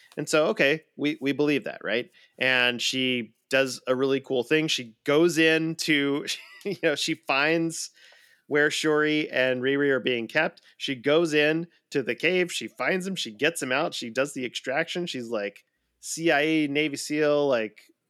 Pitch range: 125-150 Hz